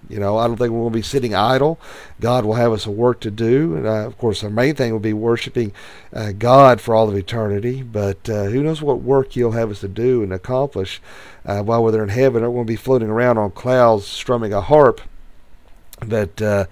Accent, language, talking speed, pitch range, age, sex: American, English, 240 wpm, 100-120 Hz, 40-59, male